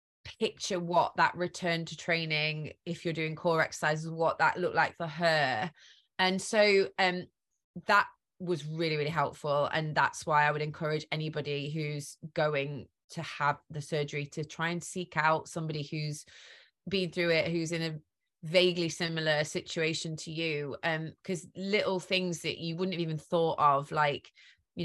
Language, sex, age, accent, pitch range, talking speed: English, female, 20-39, British, 155-180 Hz, 165 wpm